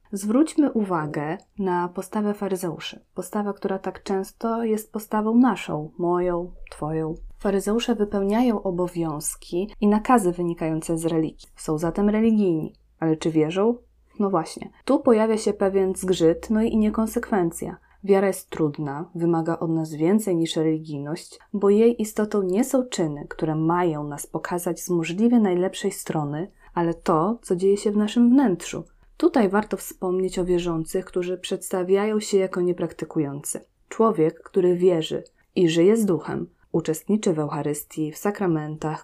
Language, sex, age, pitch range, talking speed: Polish, female, 20-39, 165-210 Hz, 140 wpm